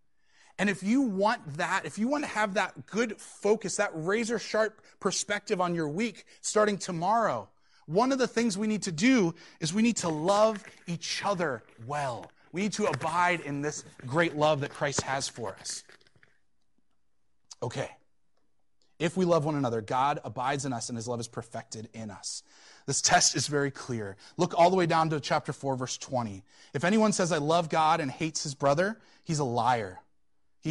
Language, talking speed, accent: English, 190 wpm, American